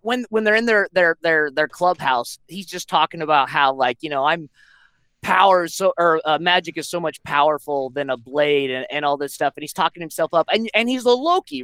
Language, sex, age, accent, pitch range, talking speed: English, male, 20-39, American, 160-230 Hz, 230 wpm